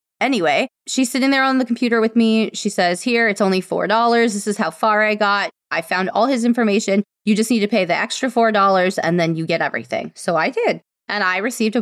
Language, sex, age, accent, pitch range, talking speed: English, female, 20-39, American, 180-235 Hz, 235 wpm